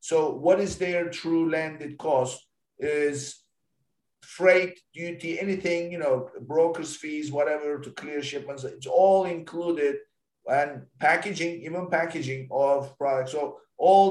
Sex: male